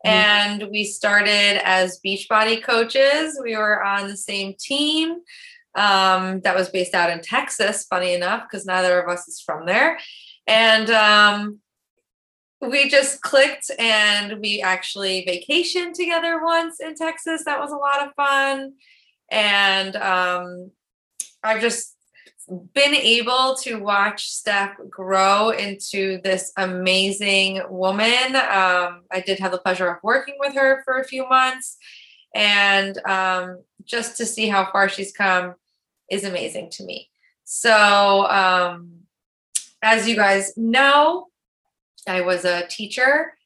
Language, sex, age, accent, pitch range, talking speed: English, female, 20-39, American, 190-260 Hz, 135 wpm